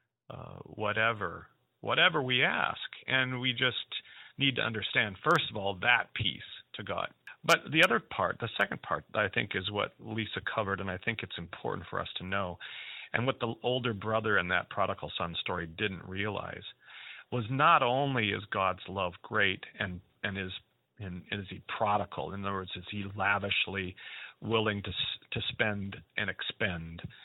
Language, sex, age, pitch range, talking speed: English, male, 40-59, 95-120 Hz, 175 wpm